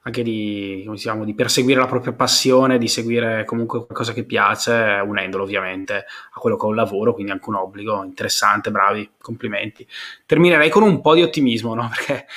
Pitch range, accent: 115-135 Hz, native